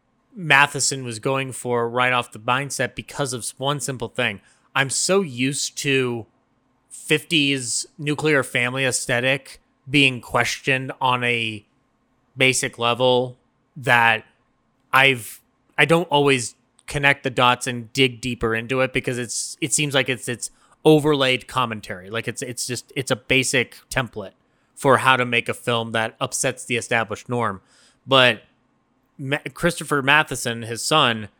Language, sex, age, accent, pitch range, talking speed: English, male, 30-49, American, 120-135 Hz, 140 wpm